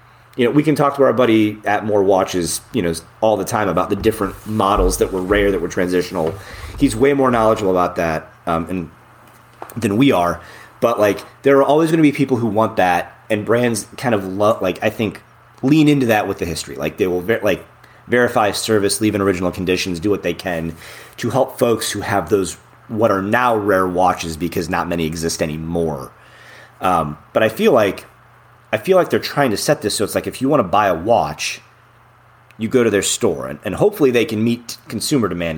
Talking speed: 220 wpm